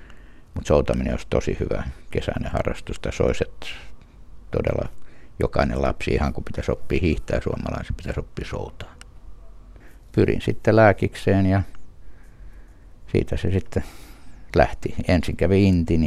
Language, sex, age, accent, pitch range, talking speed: Finnish, male, 60-79, native, 70-90 Hz, 125 wpm